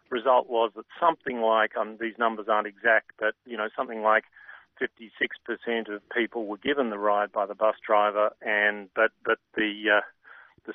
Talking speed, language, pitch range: 185 wpm, English, 110-125 Hz